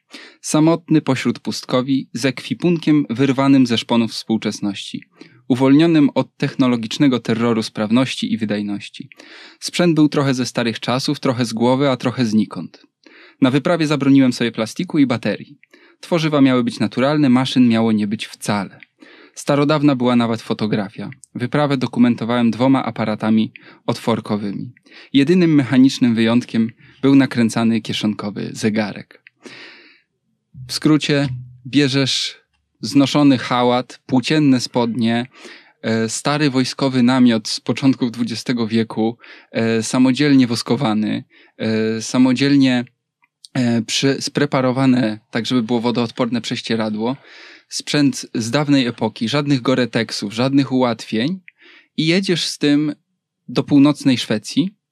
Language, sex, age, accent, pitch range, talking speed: Polish, male, 20-39, native, 115-140 Hz, 105 wpm